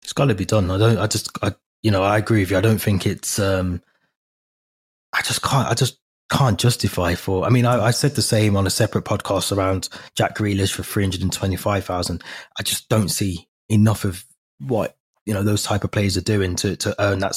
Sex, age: male, 20-39